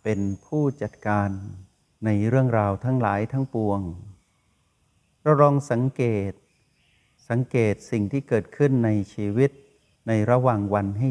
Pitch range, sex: 105-130 Hz, male